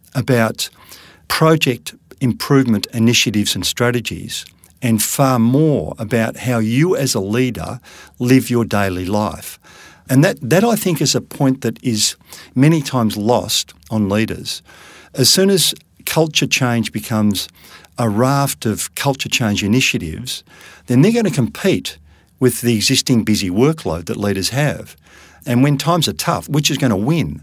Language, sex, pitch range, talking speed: English, male, 105-135 Hz, 150 wpm